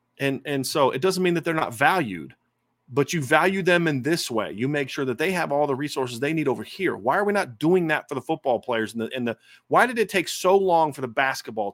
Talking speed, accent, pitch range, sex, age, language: 265 wpm, American, 130-180 Hz, male, 30-49, English